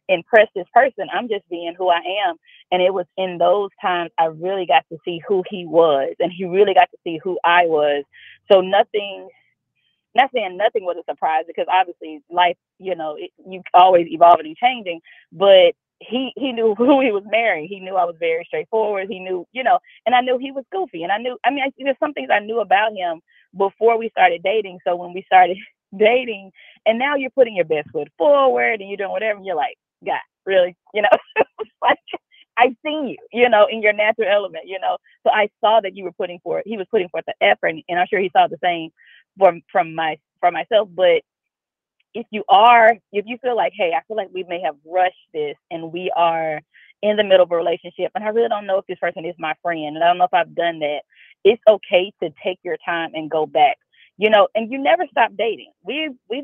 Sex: female